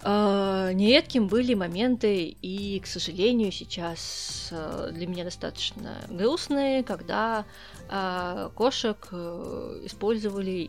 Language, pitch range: Russian, 180-220 Hz